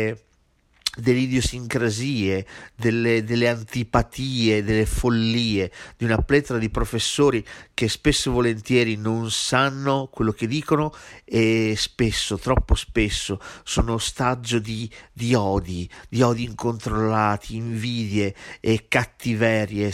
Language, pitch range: Italian, 105-120 Hz